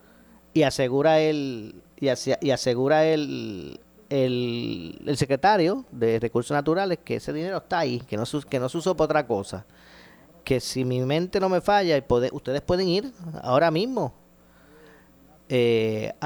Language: Spanish